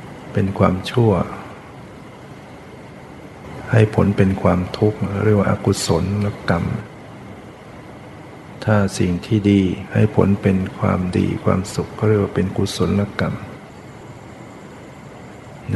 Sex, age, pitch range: male, 60-79, 95-110 Hz